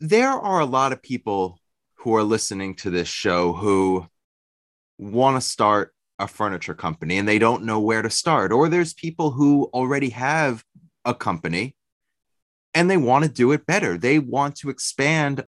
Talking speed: 175 wpm